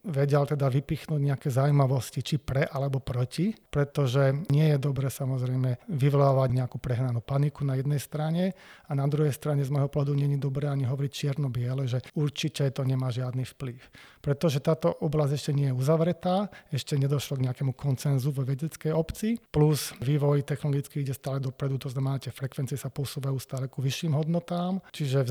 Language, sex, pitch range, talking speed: Slovak, male, 135-150 Hz, 175 wpm